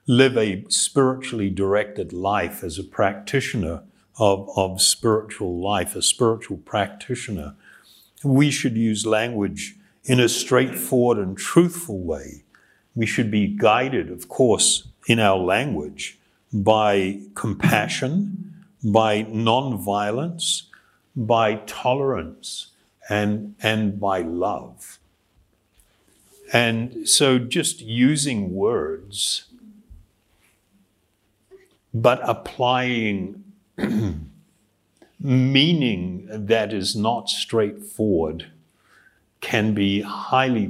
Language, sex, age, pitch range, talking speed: English, male, 60-79, 100-125 Hz, 85 wpm